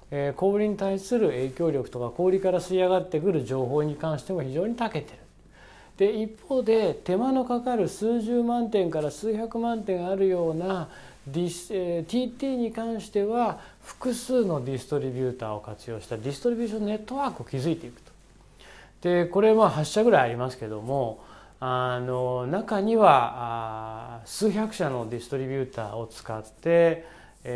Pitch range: 120-185 Hz